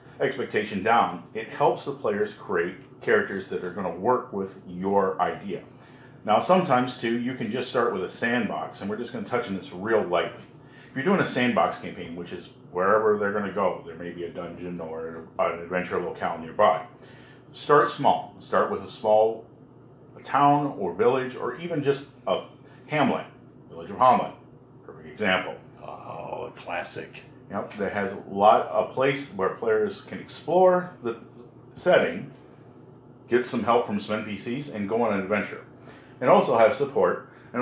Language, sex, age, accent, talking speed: English, male, 50-69, American, 175 wpm